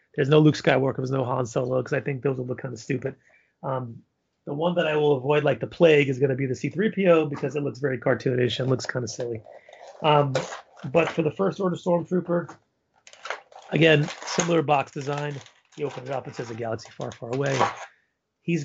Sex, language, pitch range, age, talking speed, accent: male, English, 130-150 Hz, 30-49, 205 wpm, American